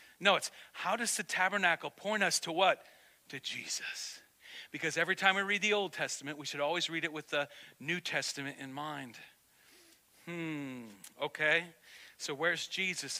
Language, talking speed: English, 165 wpm